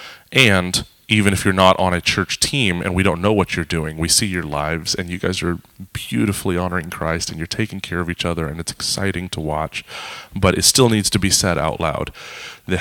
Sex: male